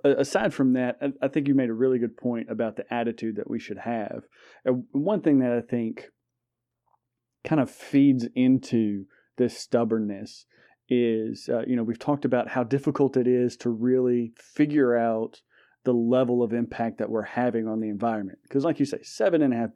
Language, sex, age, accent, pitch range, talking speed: English, male, 30-49, American, 115-130 Hz, 180 wpm